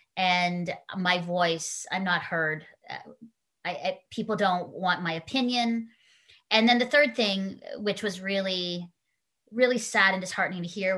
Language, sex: English, female